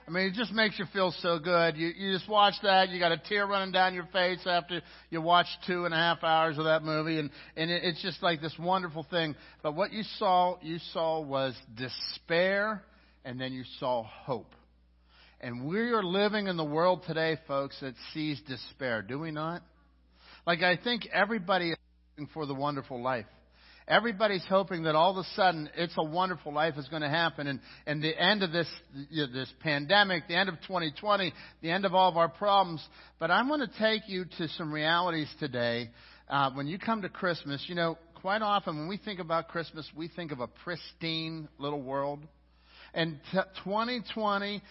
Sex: male